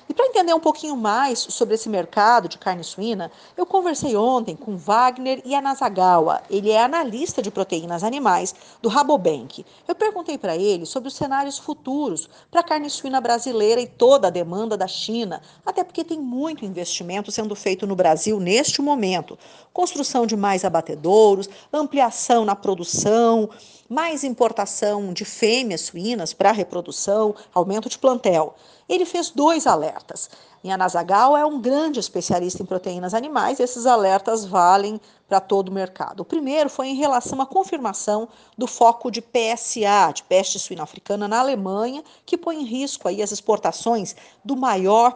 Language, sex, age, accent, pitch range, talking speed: Portuguese, female, 50-69, Brazilian, 195-275 Hz, 160 wpm